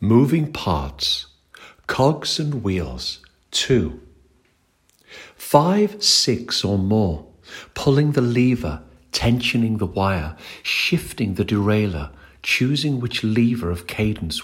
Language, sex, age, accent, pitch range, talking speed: English, male, 50-69, British, 85-120 Hz, 100 wpm